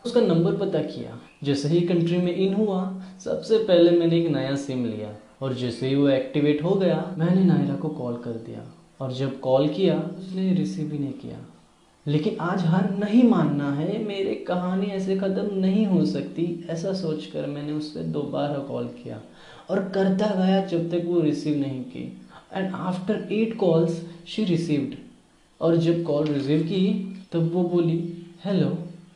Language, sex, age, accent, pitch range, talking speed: Hindi, male, 10-29, native, 150-195 Hz, 175 wpm